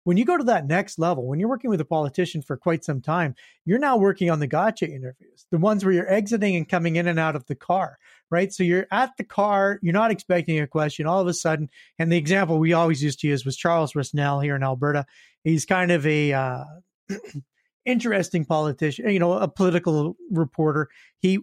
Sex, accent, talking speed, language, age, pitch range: male, American, 220 wpm, English, 40-59, 155-195 Hz